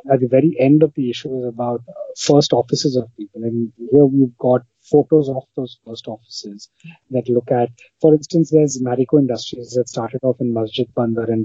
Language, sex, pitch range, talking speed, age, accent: English, male, 115-135 Hz, 195 wpm, 30-49, Indian